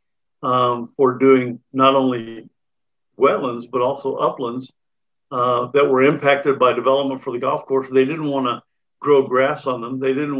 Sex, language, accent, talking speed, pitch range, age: male, English, American, 165 wpm, 125-140 Hz, 50-69